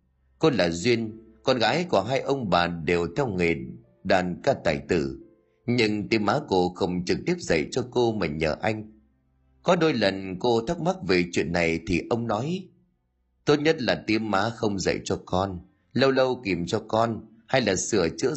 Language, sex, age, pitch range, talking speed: Vietnamese, male, 30-49, 90-120 Hz, 195 wpm